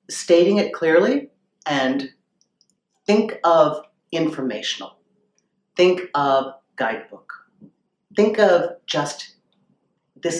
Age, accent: 50-69, American